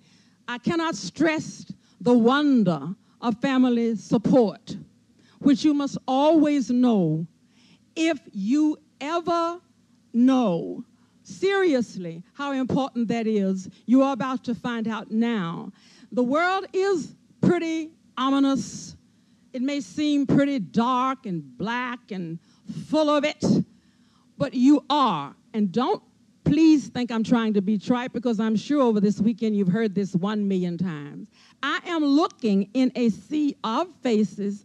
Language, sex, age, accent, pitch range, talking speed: English, female, 50-69, American, 205-270 Hz, 135 wpm